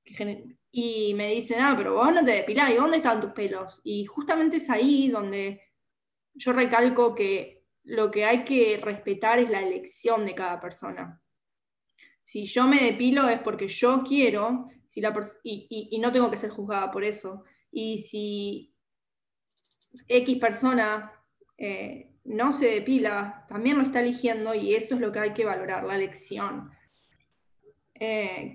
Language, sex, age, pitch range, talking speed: Spanish, female, 10-29, 210-245 Hz, 155 wpm